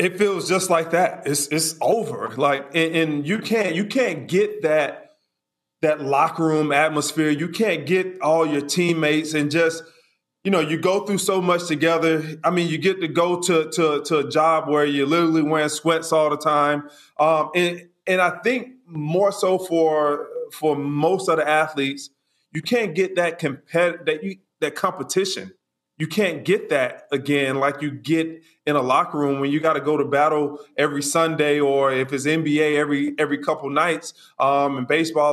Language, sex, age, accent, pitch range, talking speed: English, male, 30-49, American, 145-175 Hz, 185 wpm